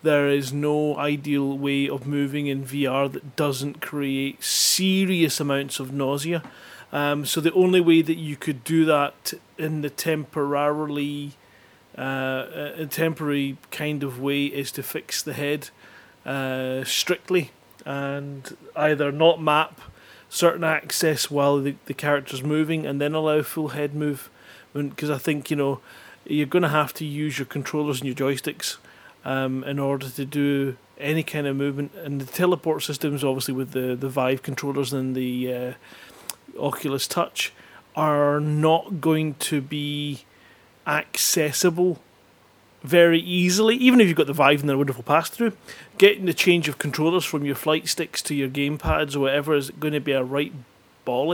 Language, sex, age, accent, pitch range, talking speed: English, male, 30-49, British, 140-160 Hz, 165 wpm